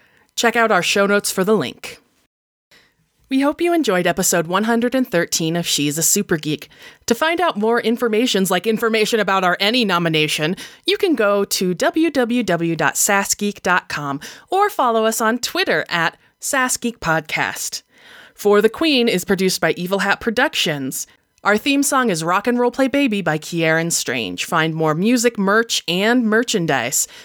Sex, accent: female, American